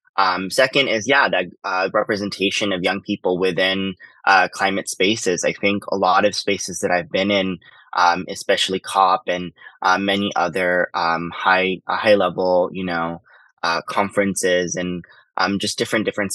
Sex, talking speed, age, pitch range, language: male, 160 wpm, 20-39, 90-100 Hz, English